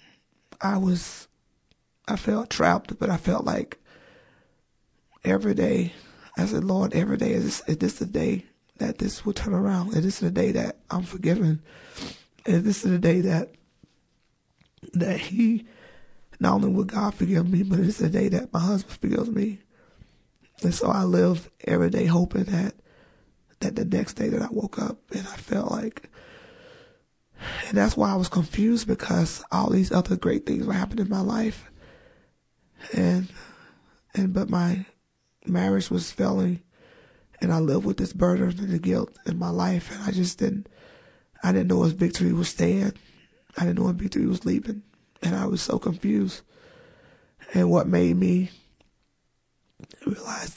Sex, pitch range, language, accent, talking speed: male, 175-215 Hz, English, American, 165 wpm